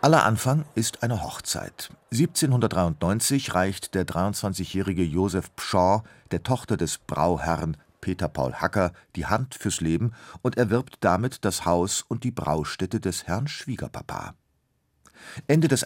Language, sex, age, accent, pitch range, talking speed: German, male, 40-59, German, 90-120 Hz, 130 wpm